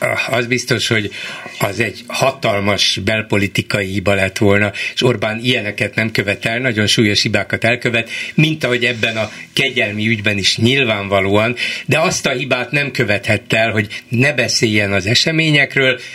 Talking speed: 150 wpm